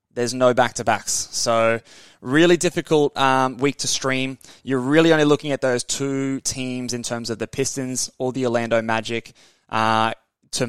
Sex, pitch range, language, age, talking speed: male, 115-135 Hz, English, 20-39, 165 wpm